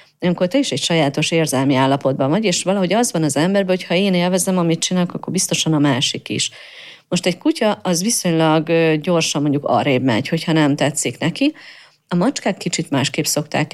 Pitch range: 145-185 Hz